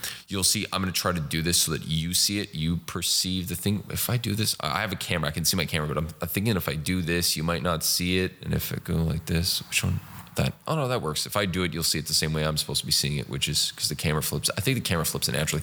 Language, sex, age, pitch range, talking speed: English, male, 20-39, 80-95 Hz, 325 wpm